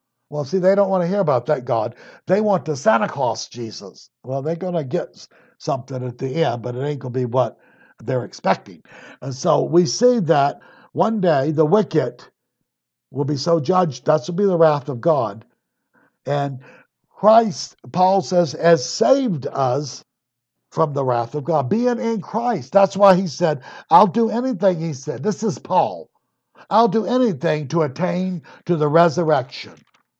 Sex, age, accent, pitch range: male, 60-79, American, 140-195 Hz